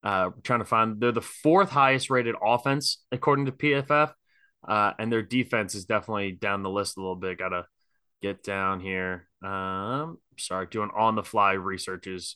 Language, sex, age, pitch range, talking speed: English, male, 20-39, 100-140 Hz, 175 wpm